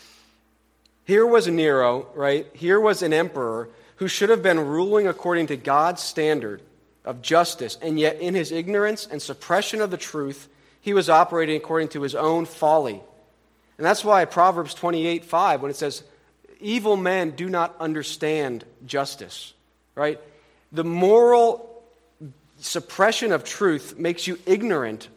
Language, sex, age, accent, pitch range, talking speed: English, male, 40-59, American, 130-170 Hz, 145 wpm